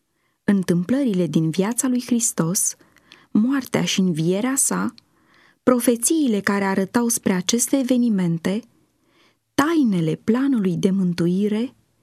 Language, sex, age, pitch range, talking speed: Romanian, female, 20-39, 190-255 Hz, 95 wpm